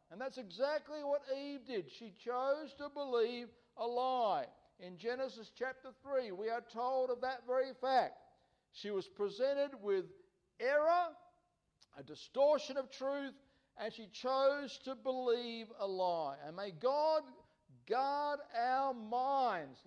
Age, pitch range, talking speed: 60-79, 210-295 Hz, 135 wpm